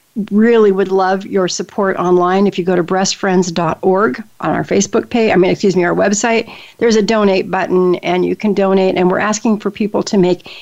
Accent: American